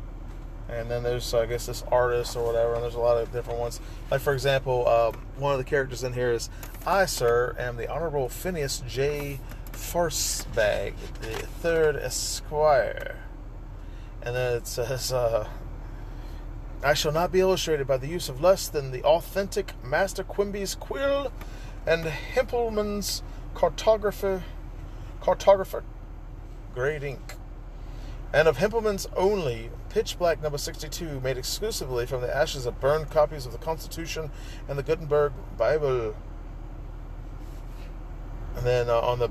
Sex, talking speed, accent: male, 140 wpm, American